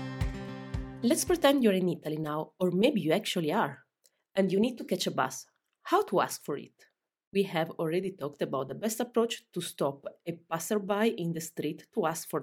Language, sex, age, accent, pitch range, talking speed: English, female, 30-49, Italian, 165-220 Hz, 200 wpm